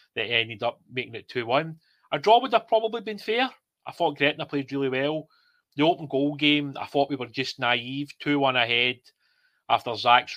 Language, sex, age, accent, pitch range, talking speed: English, male, 30-49, British, 120-145 Hz, 190 wpm